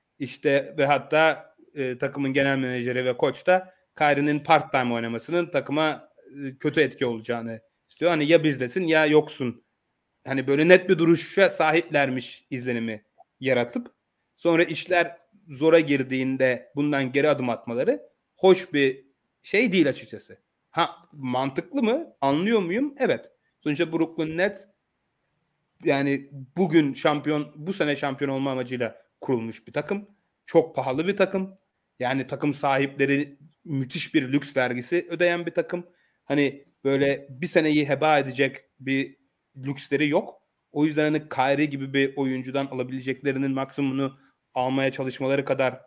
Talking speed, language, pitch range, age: 130 wpm, Turkish, 135-165 Hz, 30-49